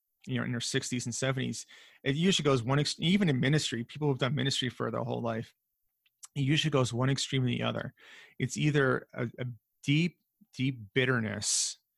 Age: 30-49